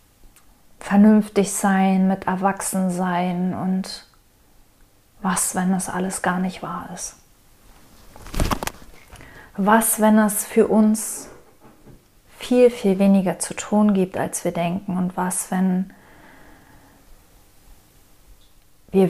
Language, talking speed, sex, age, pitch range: German, 95 wpm, female, 30-49, 160-200 Hz